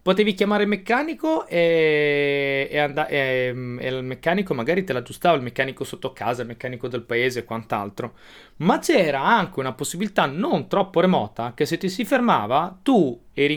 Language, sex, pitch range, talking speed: Italian, male, 130-190 Hz, 175 wpm